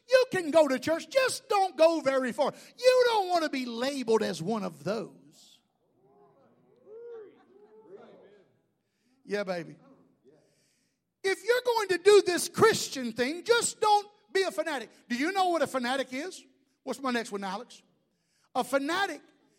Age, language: 50-69, English